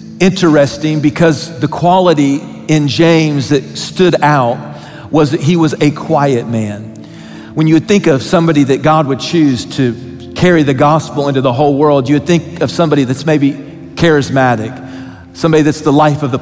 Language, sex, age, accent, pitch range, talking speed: English, male, 40-59, American, 135-160 Hz, 175 wpm